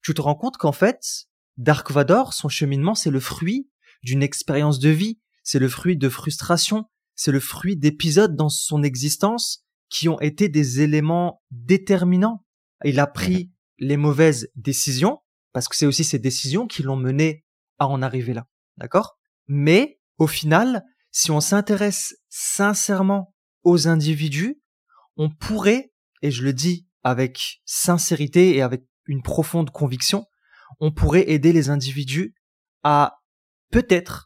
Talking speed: 145 wpm